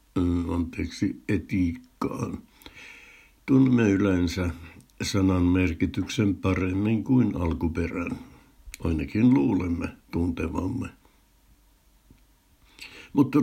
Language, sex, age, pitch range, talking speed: Finnish, male, 60-79, 85-100 Hz, 60 wpm